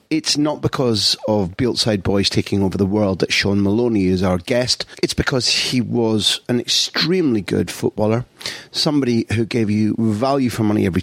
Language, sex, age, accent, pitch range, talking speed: English, male, 40-59, British, 105-135 Hz, 175 wpm